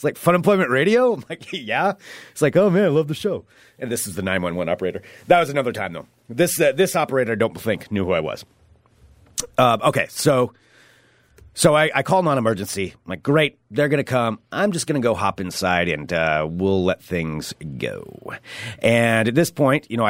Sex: male